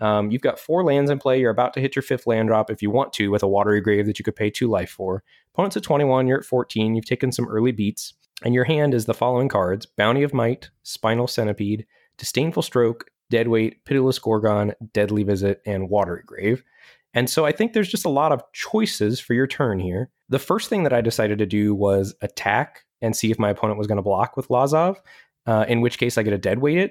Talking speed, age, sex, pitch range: 235 wpm, 20-39, male, 105-135 Hz